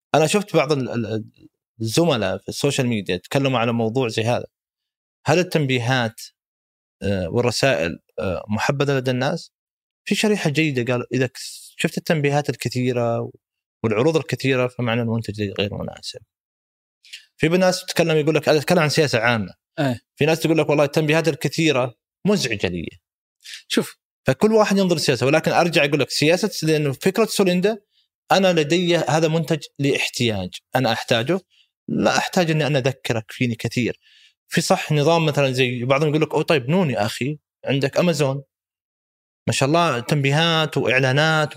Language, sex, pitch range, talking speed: Arabic, male, 120-160 Hz, 140 wpm